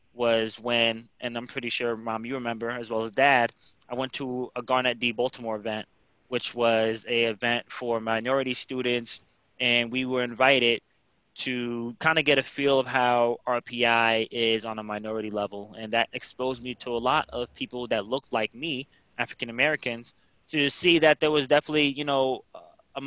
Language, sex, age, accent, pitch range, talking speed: English, male, 20-39, American, 120-140 Hz, 180 wpm